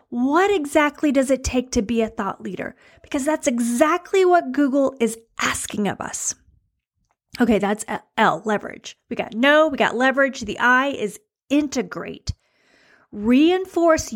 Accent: American